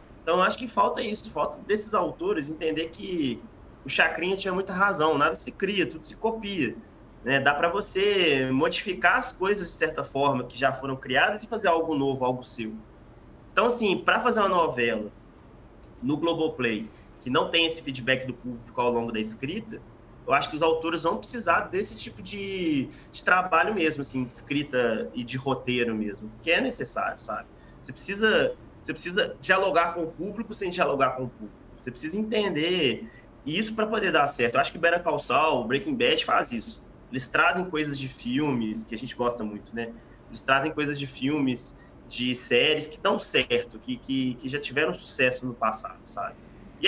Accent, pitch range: Brazilian, 125-180 Hz